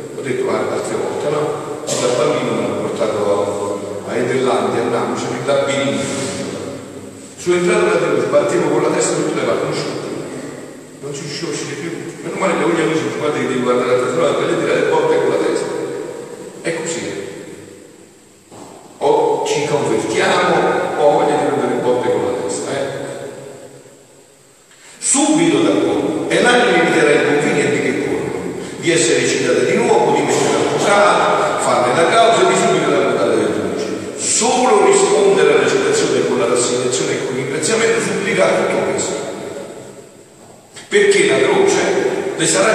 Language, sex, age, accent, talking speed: Italian, male, 50-69, native, 150 wpm